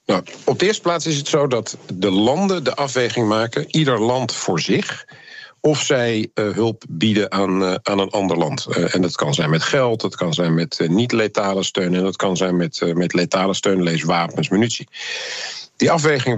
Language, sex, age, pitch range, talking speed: Dutch, male, 50-69, 95-130 Hz, 205 wpm